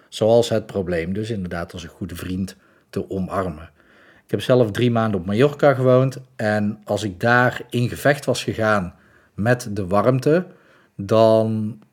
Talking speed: 155 wpm